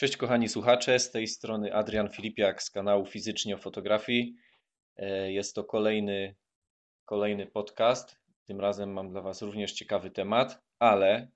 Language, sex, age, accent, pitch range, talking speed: Polish, male, 20-39, native, 100-110 Hz, 145 wpm